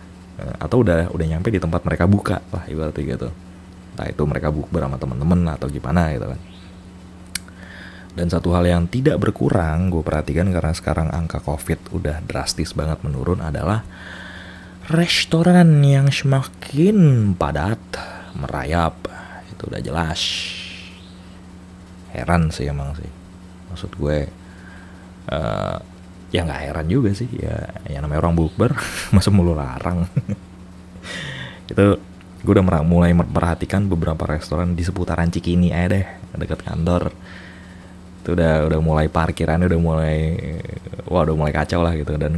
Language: Indonesian